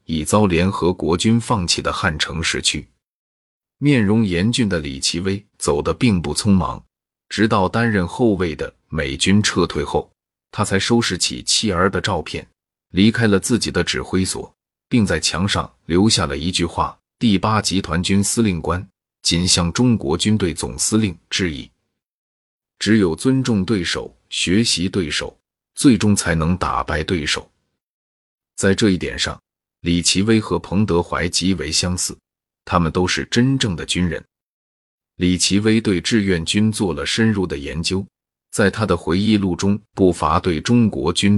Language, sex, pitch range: Chinese, male, 85-105 Hz